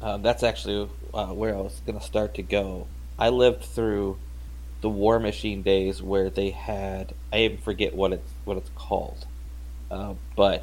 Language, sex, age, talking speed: English, male, 30-49, 150 wpm